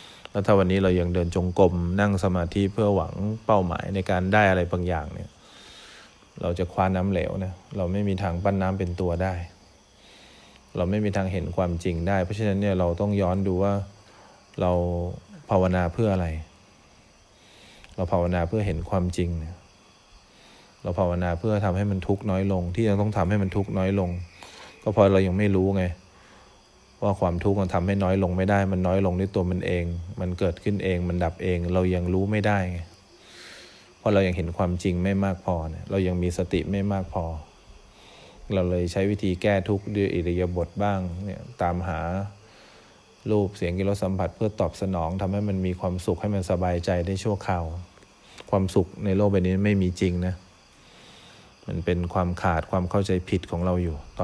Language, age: English, 20-39